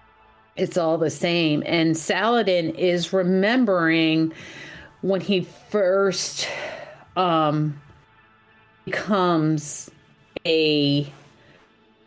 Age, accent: 40-59, American